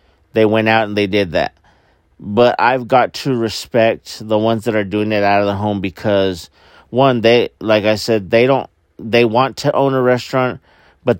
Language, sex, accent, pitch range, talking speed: English, male, American, 90-130 Hz, 200 wpm